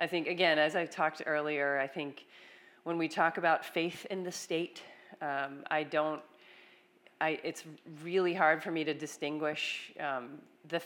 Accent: American